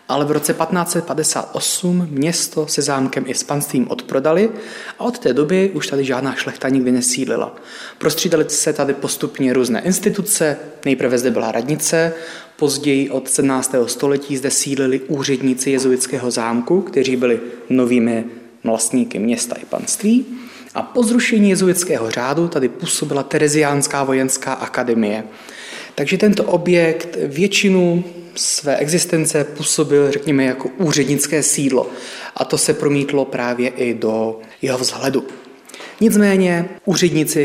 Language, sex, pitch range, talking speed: Czech, male, 130-155 Hz, 125 wpm